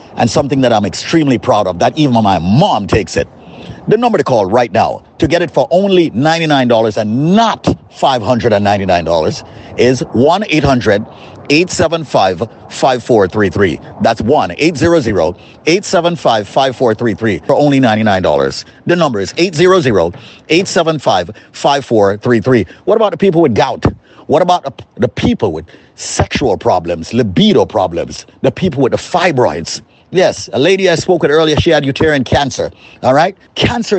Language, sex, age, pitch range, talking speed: English, male, 50-69, 125-170 Hz, 130 wpm